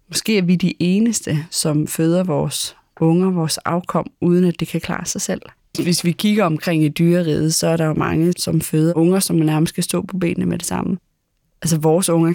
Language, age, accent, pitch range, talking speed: Danish, 20-39, native, 165-185 Hz, 215 wpm